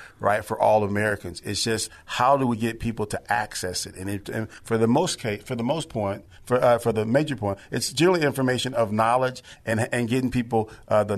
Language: English